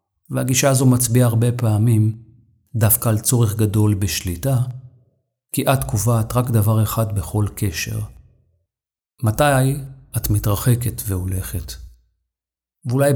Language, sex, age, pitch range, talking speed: Hebrew, male, 40-59, 100-125 Hz, 105 wpm